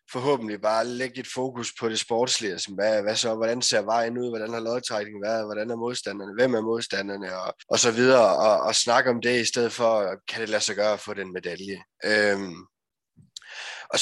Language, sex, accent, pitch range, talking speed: Danish, male, native, 105-130 Hz, 215 wpm